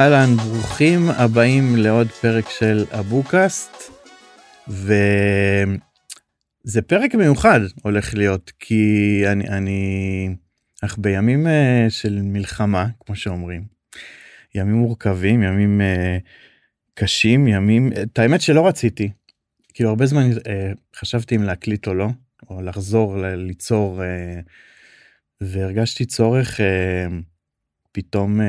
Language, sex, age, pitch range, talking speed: Hebrew, male, 30-49, 95-115 Hz, 95 wpm